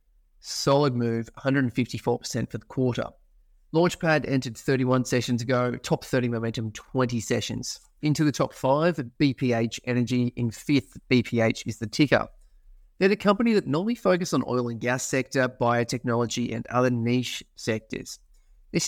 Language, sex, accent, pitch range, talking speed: English, male, Australian, 115-135 Hz, 145 wpm